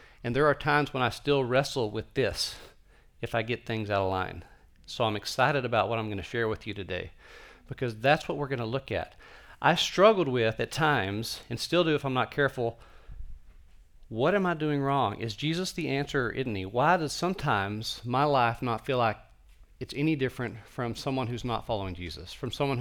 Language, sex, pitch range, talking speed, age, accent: English, male, 110-140 Hz, 205 wpm, 40-59, American